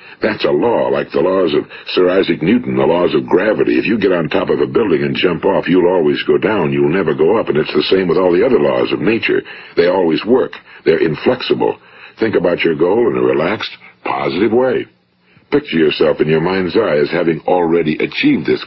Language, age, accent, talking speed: English, 60-79, American, 220 wpm